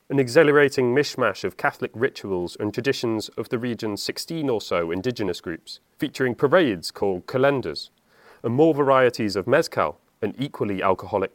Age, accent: 30-49, British